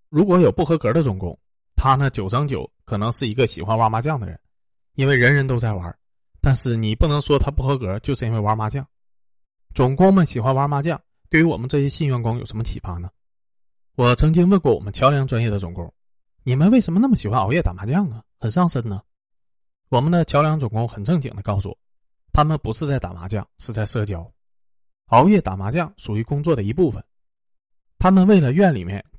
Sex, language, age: male, Chinese, 20-39